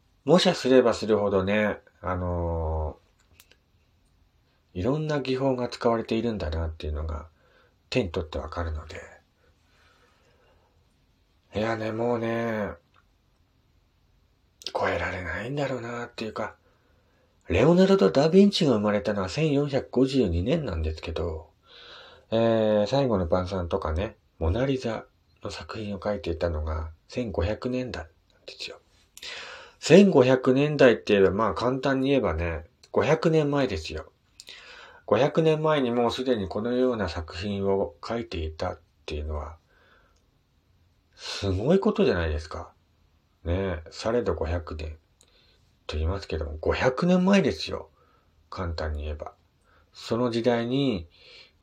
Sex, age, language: male, 40-59, Japanese